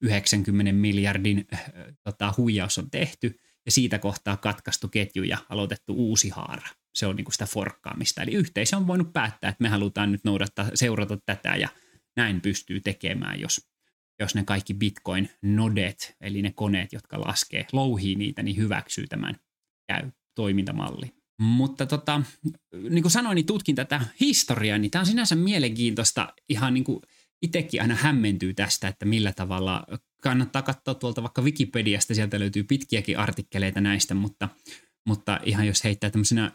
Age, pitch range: 20-39, 100-135 Hz